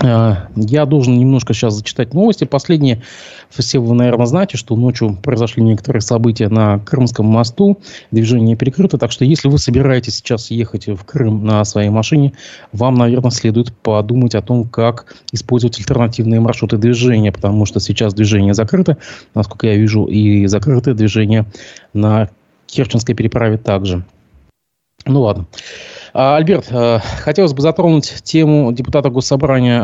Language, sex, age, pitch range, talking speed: Russian, male, 20-39, 110-135 Hz, 135 wpm